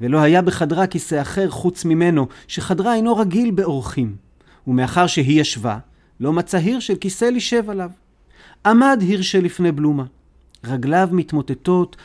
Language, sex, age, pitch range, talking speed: Hebrew, male, 40-59, 135-195 Hz, 130 wpm